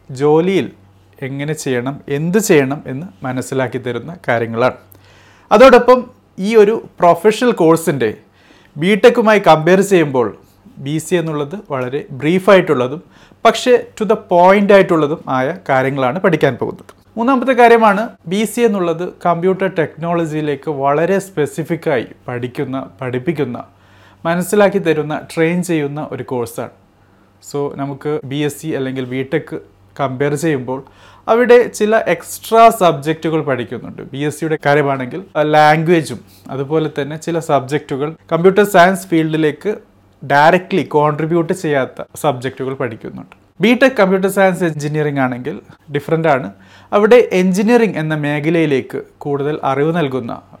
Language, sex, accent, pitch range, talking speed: Malayalam, male, native, 135-185 Hz, 110 wpm